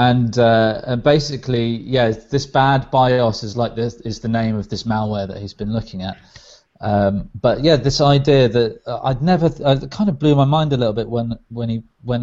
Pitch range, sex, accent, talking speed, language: 110-140 Hz, male, British, 215 wpm, English